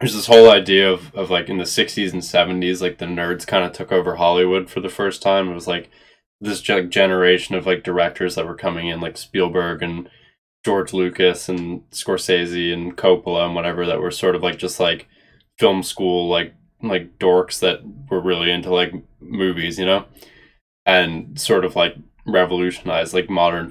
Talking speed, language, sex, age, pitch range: 185 wpm, English, male, 20-39, 85-95 Hz